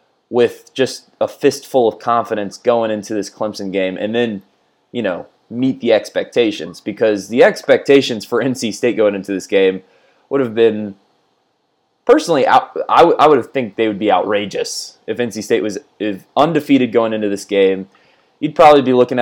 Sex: male